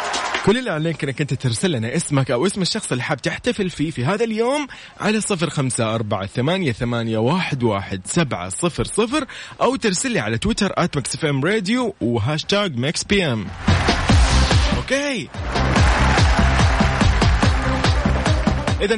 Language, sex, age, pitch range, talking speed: Arabic, male, 20-39, 130-200 Hz, 115 wpm